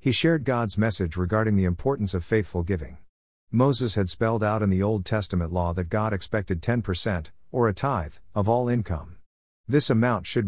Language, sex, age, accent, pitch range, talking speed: English, male, 50-69, American, 85-115 Hz, 185 wpm